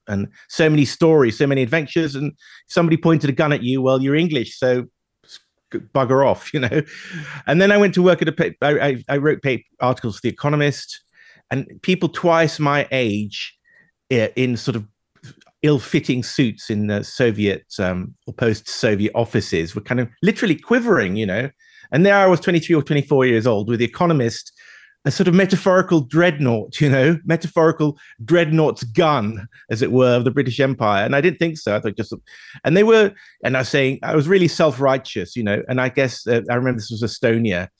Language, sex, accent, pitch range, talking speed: English, male, British, 120-170 Hz, 190 wpm